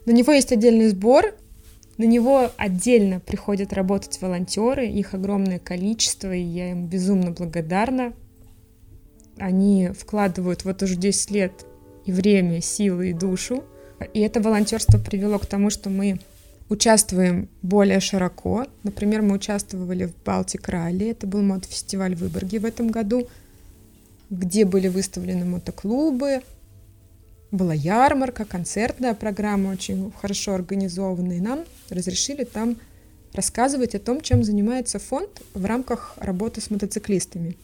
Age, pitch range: 20-39, 180-230 Hz